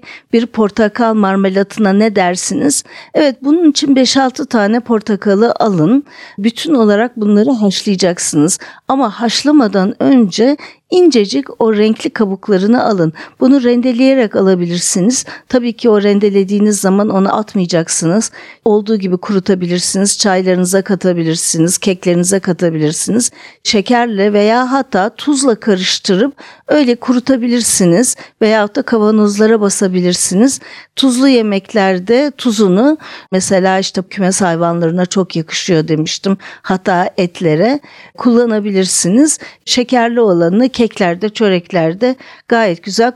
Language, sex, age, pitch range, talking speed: Turkish, female, 50-69, 190-250 Hz, 100 wpm